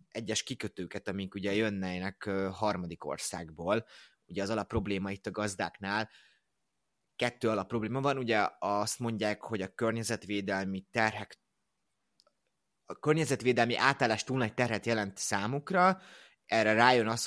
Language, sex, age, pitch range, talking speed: Hungarian, male, 30-49, 100-120 Hz, 125 wpm